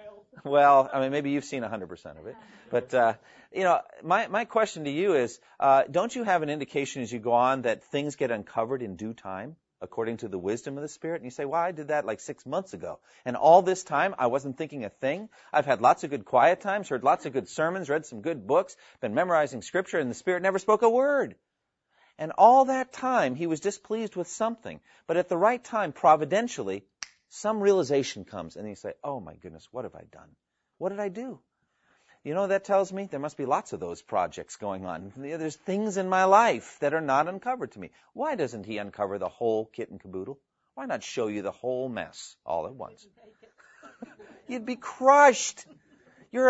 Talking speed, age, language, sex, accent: 220 wpm, 40-59, English, male, American